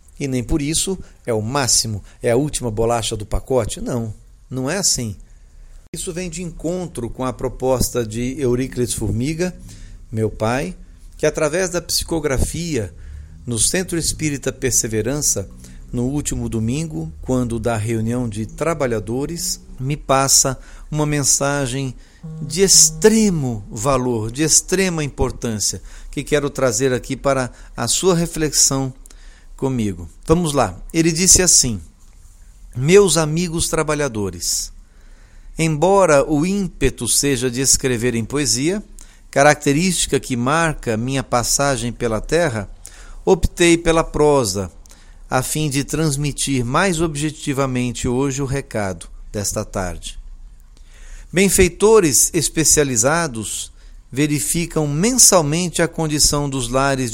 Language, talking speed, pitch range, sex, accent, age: Portuguese, 115 wpm, 110-155 Hz, male, Brazilian, 60-79